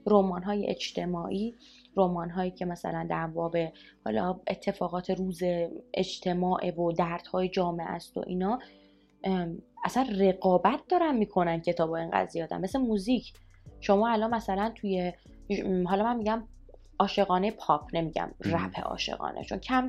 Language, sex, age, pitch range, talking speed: Persian, female, 20-39, 175-240 Hz, 130 wpm